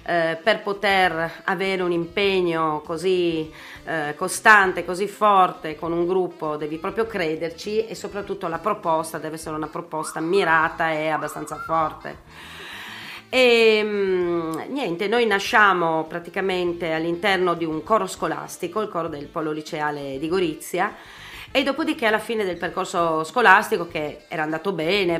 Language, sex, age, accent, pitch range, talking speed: Italian, female, 30-49, native, 160-200 Hz, 130 wpm